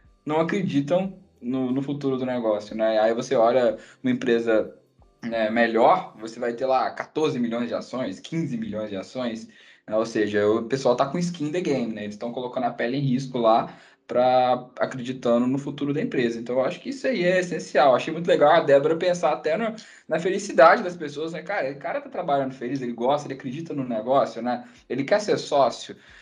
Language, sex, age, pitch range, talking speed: Portuguese, male, 10-29, 120-175 Hz, 210 wpm